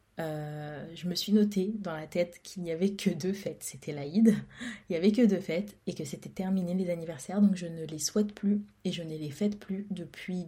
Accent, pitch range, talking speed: French, 180-210 Hz, 235 wpm